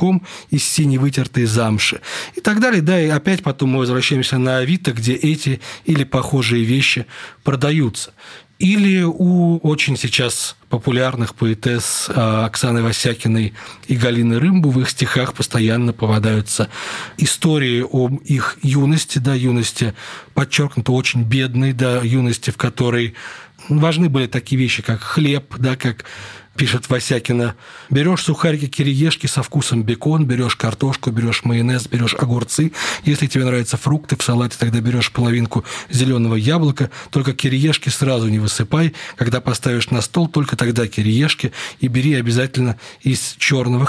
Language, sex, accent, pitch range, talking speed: Russian, male, native, 120-140 Hz, 140 wpm